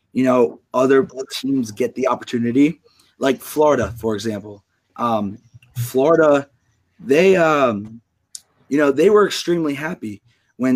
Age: 20-39